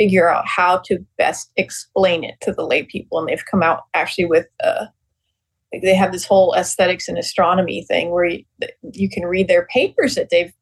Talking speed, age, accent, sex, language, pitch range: 205 wpm, 40-59, American, female, English, 170-240 Hz